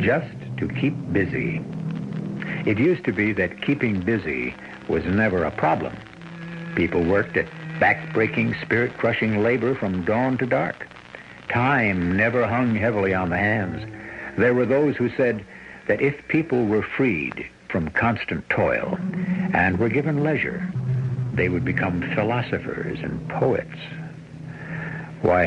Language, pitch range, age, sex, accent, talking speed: English, 100-150 Hz, 60-79, male, American, 130 wpm